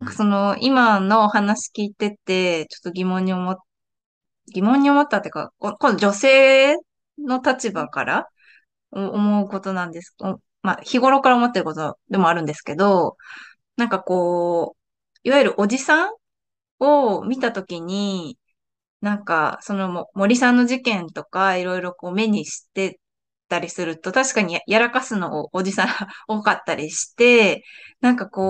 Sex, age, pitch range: female, 20-39, 185-250 Hz